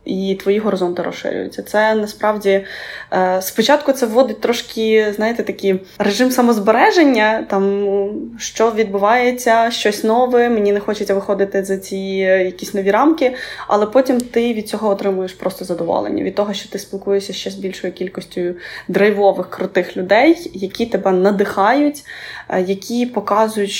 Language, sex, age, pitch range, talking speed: Ukrainian, female, 20-39, 195-235 Hz, 135 wpm